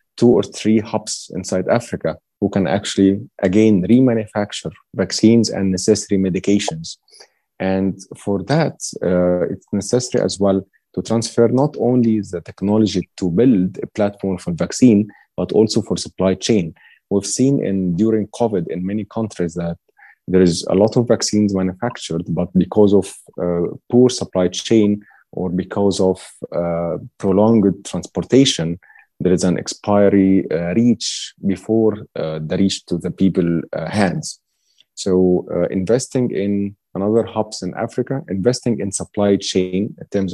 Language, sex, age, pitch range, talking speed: English, male, 30-49, 90-110 Hz, 145 wpm